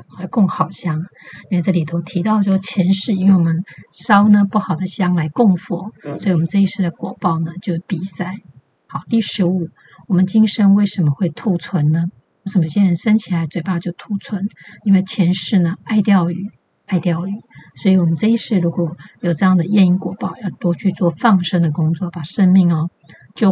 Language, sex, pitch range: Chinese, female, 170-195 Hz